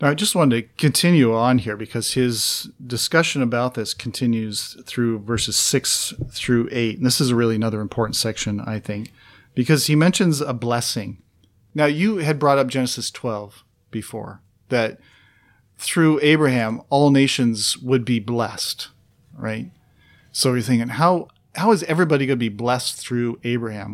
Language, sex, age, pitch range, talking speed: English, male, 40-59, 115-150 Hz, 160 wpm